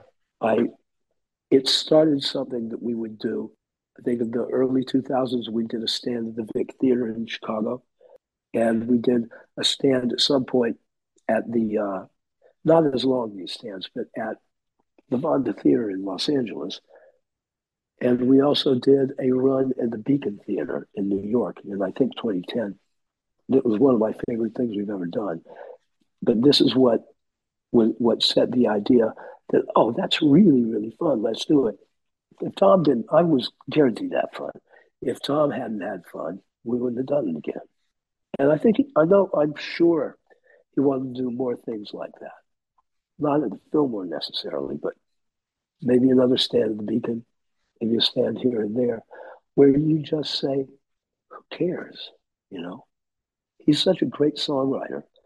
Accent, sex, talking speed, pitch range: American, male, 170 wpm, 115-140 Hz